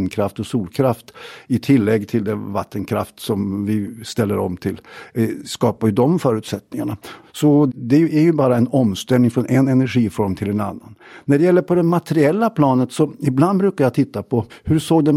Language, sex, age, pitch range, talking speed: Swedish, male, 50-69, 115-155 Hz, 180 wpm